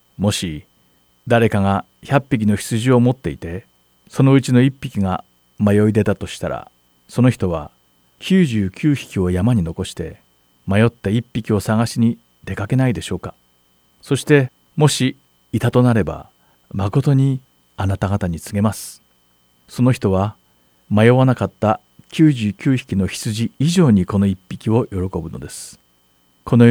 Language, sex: Japanese, male